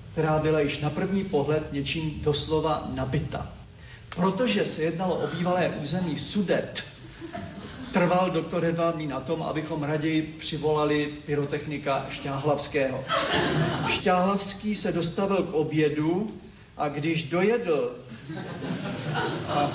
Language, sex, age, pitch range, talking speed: Slovak, male, 40-59, 150-180 Hz, 105 wpm